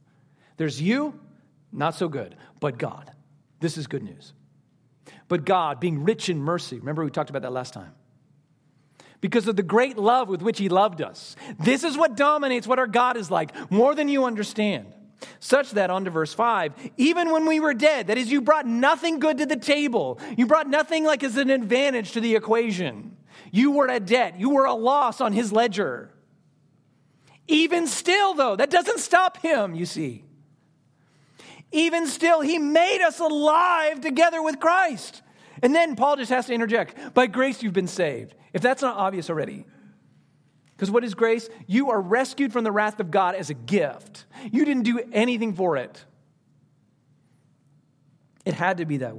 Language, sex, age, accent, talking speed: English, male, 40-59, American, 180 wpm